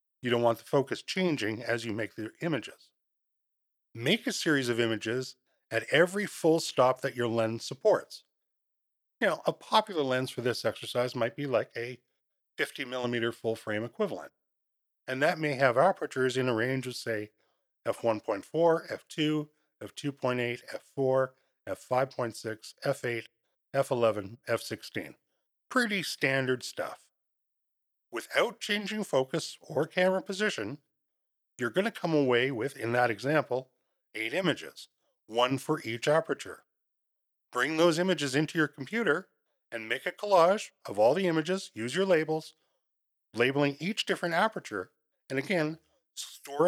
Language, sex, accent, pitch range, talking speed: English, male, American, 120-165 Hz, 140 wpm